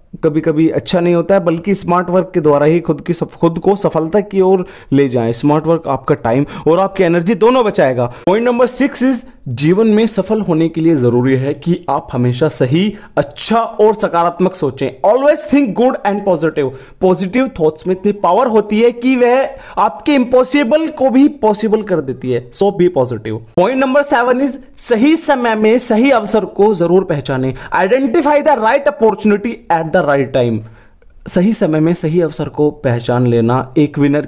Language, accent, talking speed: Hindi, native, 145 wpm